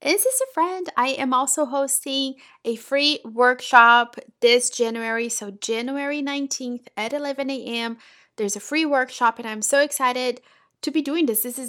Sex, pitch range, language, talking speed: female, 225-270 Hz, English, 175 wpm